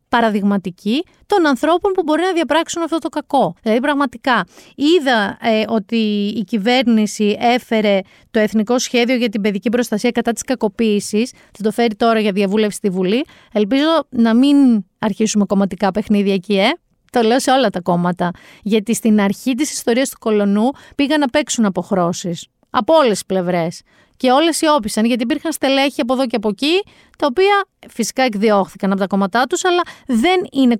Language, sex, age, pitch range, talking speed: Greek, female, 30-49, 210-275 Hz, 170 wpm